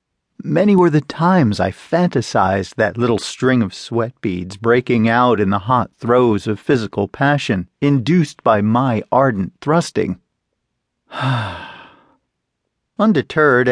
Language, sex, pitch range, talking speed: English, male, 105-140 Hz, 120 wpm